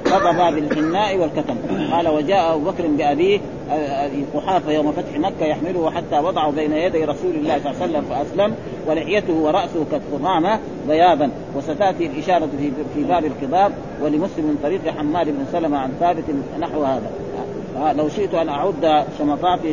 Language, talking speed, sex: Arabic, 145 wpm, male